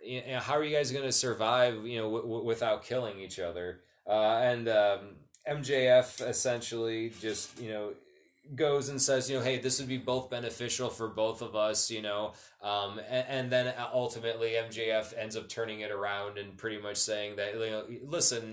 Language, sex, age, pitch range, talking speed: English, male, 20-39, 110-130 Hz, 180 wpm